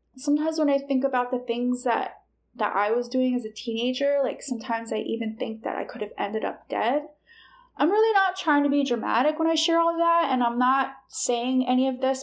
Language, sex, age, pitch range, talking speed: English, female, 20-39, 245-295 Hz, 230 wpm